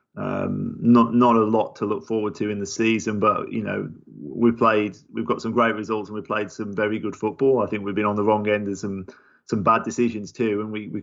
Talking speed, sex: 250 wpm, male